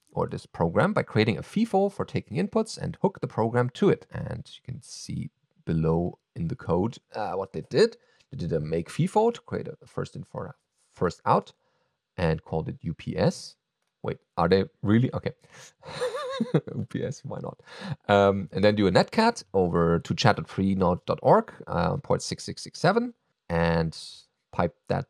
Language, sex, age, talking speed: English, male, 40-59, 160 wpm